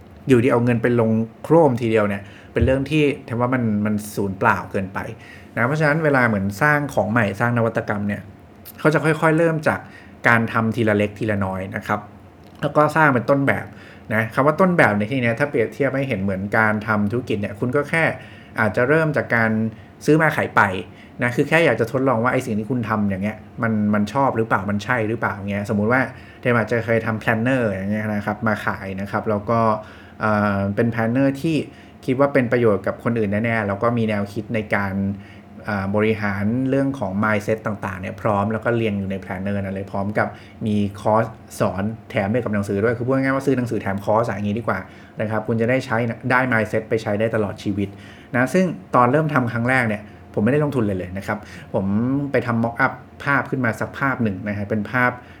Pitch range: 105-125 Hz